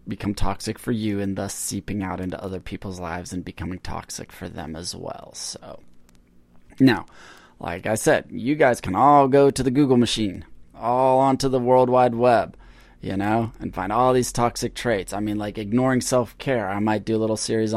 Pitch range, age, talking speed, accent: 95-115 Hz, 20-39, 195 wpm, American